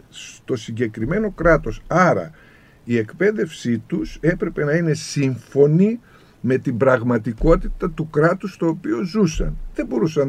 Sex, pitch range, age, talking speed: male, 110-155 Hz, 50-69, 120 wpm